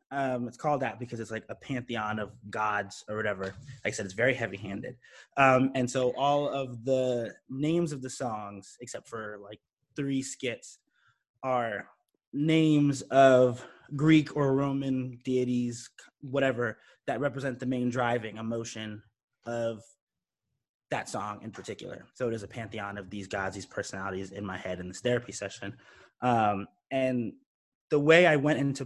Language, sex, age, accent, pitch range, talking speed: English, male, 20-39, American, 110-140 Hz, 160 wpm